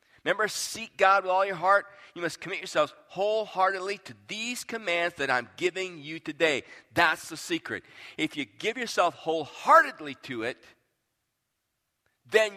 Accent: American